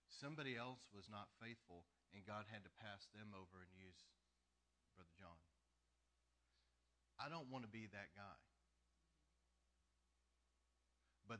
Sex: male